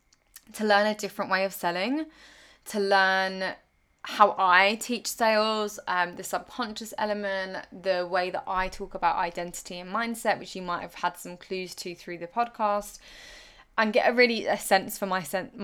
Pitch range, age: 180-225 Hz, 20-39